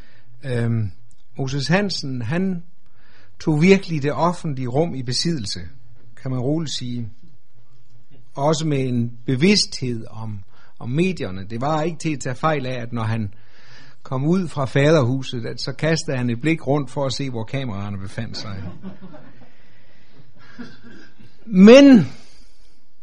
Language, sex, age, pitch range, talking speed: Danish, male, 60-79, 120-175 Hz, 135 wpm